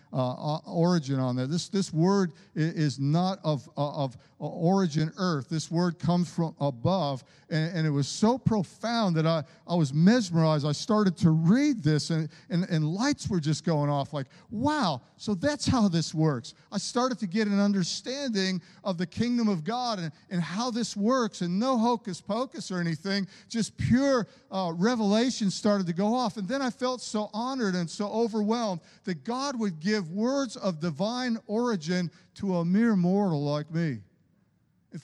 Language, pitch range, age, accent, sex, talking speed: English, 155-210 Hz, 50-69, American, male, 180 wpm